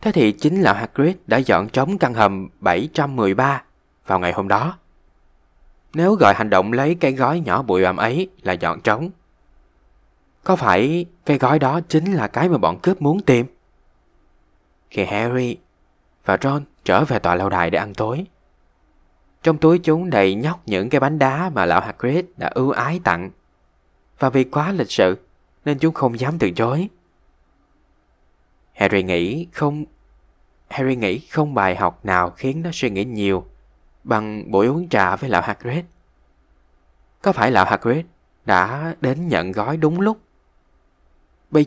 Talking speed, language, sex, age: 165 wpm, Vietnamese, male, 20-39